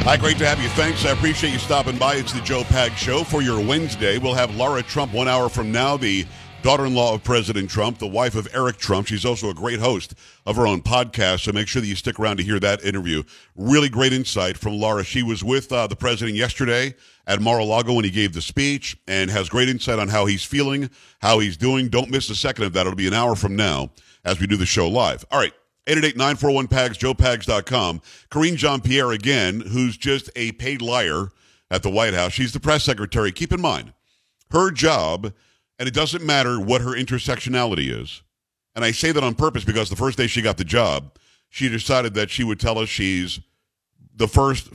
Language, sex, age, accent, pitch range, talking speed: English, male, 50-69, American, 100-130 Hz, 215 wpm